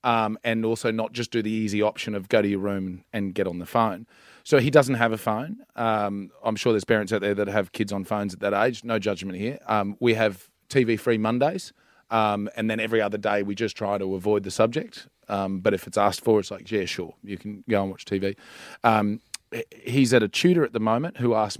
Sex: male